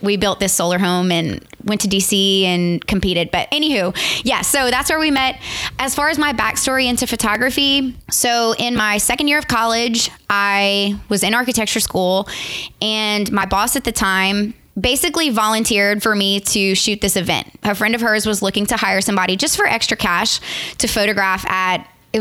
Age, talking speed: 20-39, 185 wpm